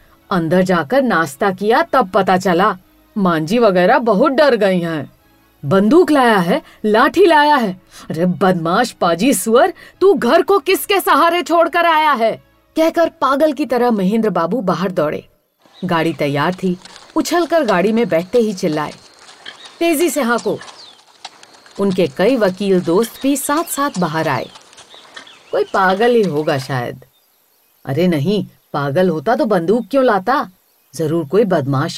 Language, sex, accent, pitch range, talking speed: Hindi, female, native, 170-260 Hz, 135 wpm